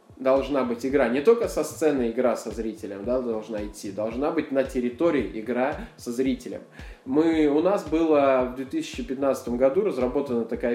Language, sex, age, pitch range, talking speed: Russian, male, 20-39, 125-160 Hz, 150 wpm